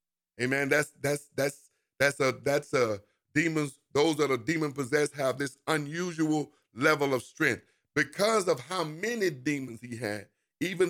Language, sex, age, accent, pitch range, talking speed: English, male, 50-69, American, 125-160 Hz, 155 wpm